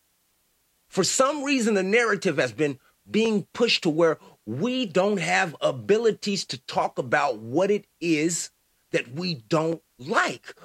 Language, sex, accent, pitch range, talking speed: English, male, American, 155-220 Hz, 140 wpm